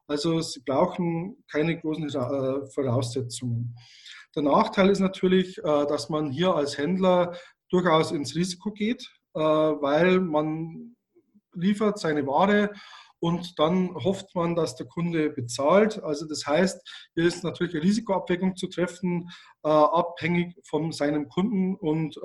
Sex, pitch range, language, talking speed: male, 150-190 Hz, German, 125 wpm